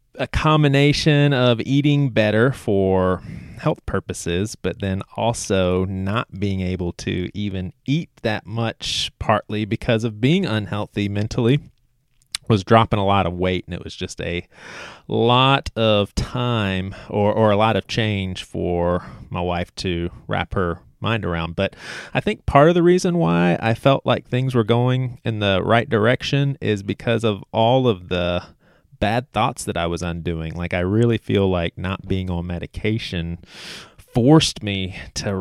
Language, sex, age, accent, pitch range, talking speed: English, male, 30-49, American, 90-125 Hz, 160 wpm